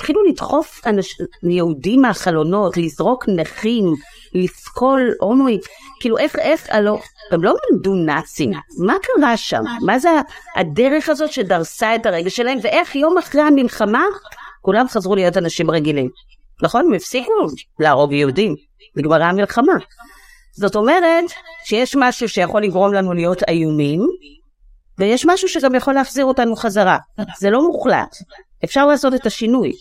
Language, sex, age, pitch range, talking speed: Hebrew, female, 50-69, 180-265 Hz, 135 wpm